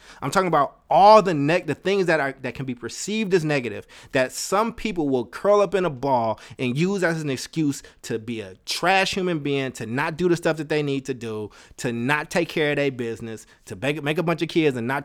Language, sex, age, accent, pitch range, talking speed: English, male, 30-49, American, 130-195 Hz, 245 wpm